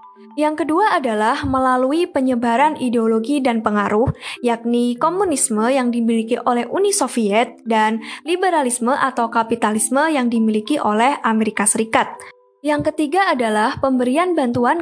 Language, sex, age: Indonesian, female, 20-39